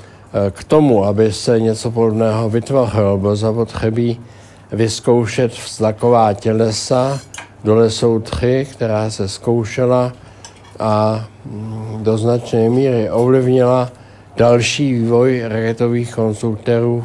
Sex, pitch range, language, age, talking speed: male, 105-125 Hz, Czech, 60-79, 90 wpm